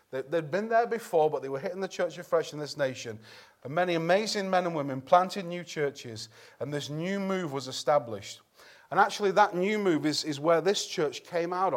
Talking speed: 210 wpm